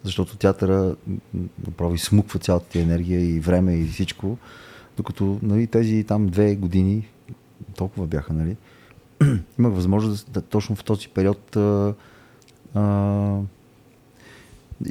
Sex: male